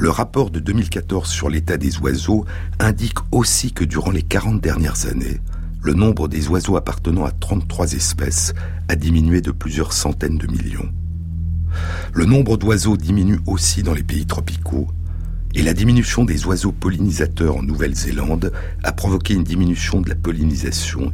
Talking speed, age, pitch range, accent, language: 155 wpm, 60-79, 80-95 Hz, French, French